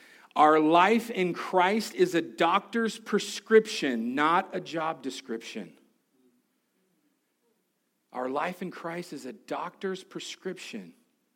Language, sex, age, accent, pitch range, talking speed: English, male, 40-59, American, 130-195 Hz, 105 wpm